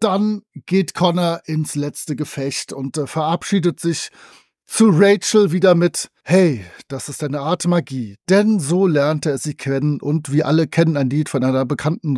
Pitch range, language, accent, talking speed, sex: 165-210 Hz, German, German, 170 wpm, male